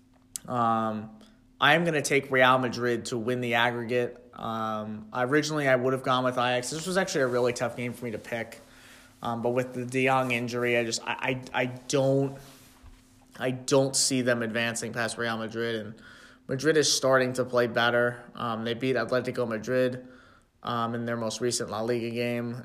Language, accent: English, American